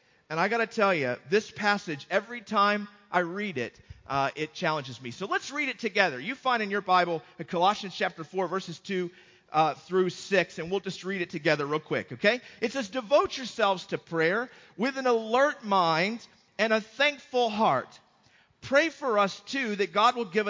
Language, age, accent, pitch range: English, 40-59, American, 170-230 Hz